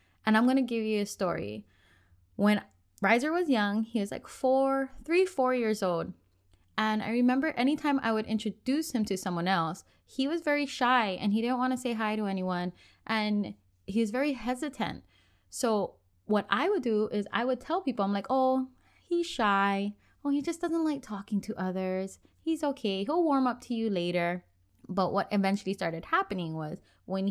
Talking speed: 190 wpm